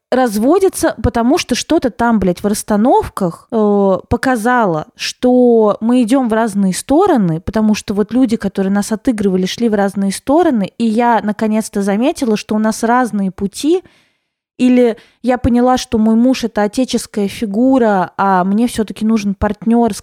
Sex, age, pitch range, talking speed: female, 20-39, 205-255 Hz, 155 wpm